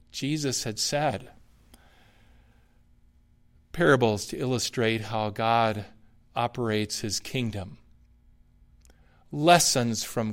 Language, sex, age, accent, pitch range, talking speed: English, male, 50-69, American, 110-145 Hz, 75 wpm